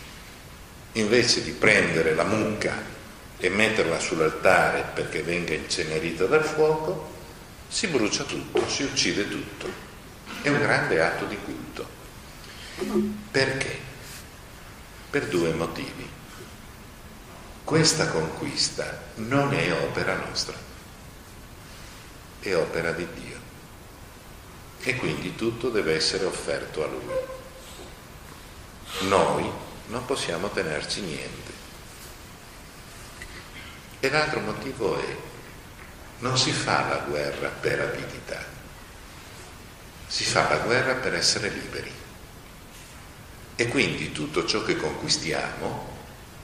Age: 50-69